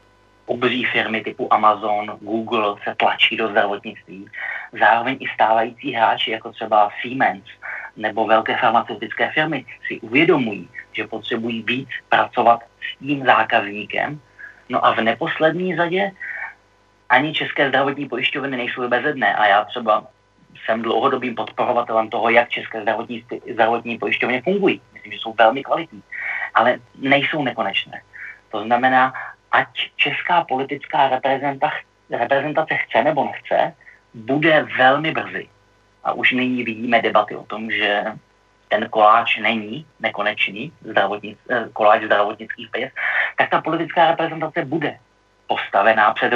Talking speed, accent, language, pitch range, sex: 125 wpm, native, Czech, 110-140 Hz, male